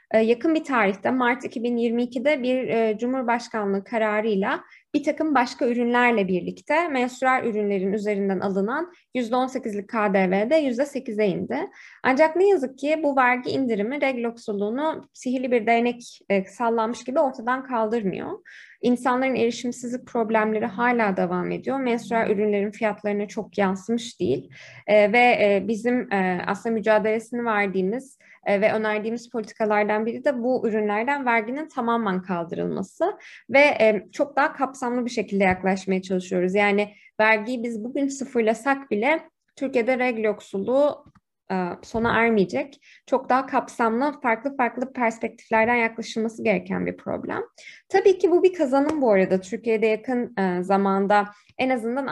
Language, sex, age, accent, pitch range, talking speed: Turkish, female, 20-39, native, 210-260 Hz, 125 wpm